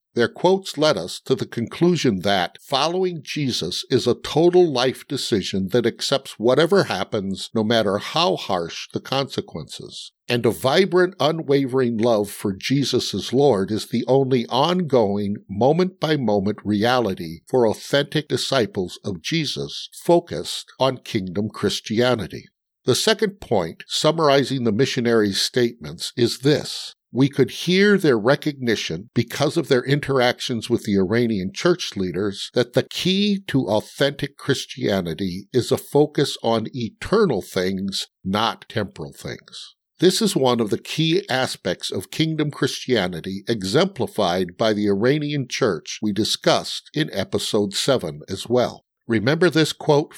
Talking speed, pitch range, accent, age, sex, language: 135 wpm, 110-150 Hz, American, 60-79, male, English